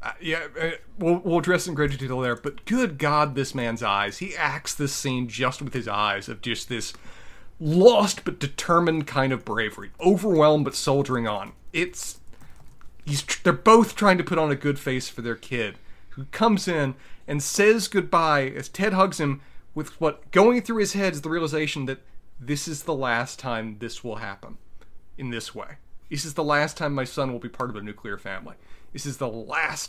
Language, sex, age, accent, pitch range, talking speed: English, male, 30-49, American, 120-170 Hz, 200 wpm